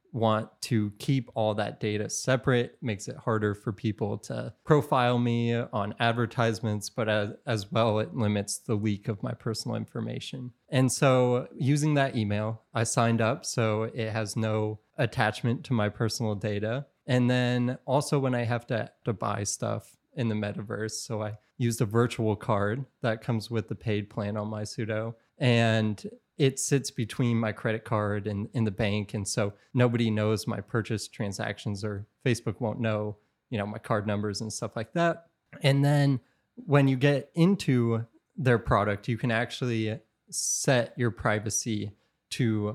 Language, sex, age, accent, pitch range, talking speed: English, male, 20-39, American, 105-125 Hz, 170 wpm